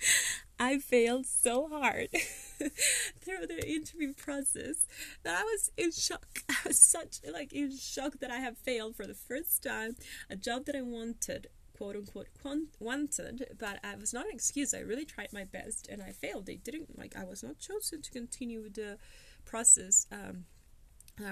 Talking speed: 175 wpm